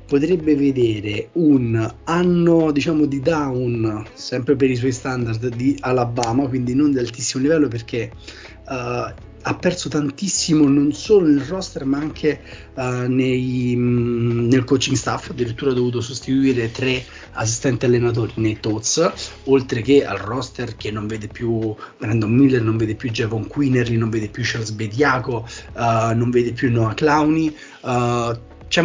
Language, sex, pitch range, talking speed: Italian, male, 120-150 Hz, 150 wpm